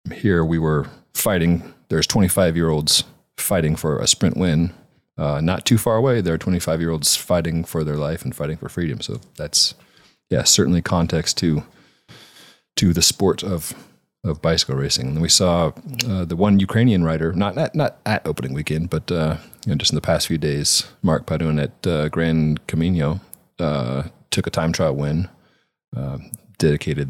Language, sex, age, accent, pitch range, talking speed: English, male, 30-49, American, 80-95 Hz, 185 wpm